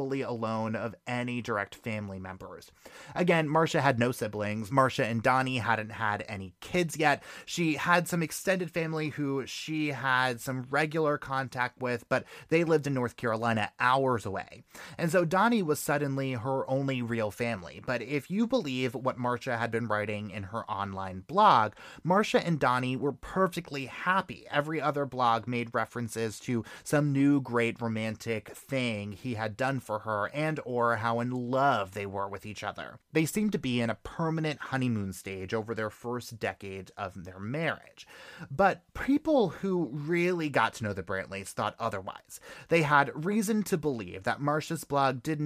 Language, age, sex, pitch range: English, 30-49, male, 110-150 Hz